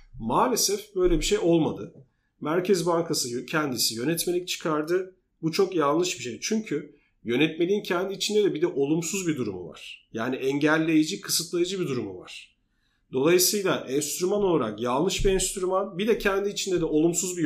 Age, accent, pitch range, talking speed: 40-59, native, 150-200 Hz, 155 wpm